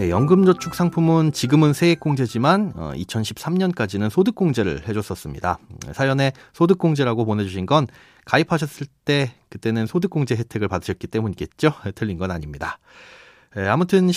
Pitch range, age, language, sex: 105-155 Hz, 30-49, Korean, male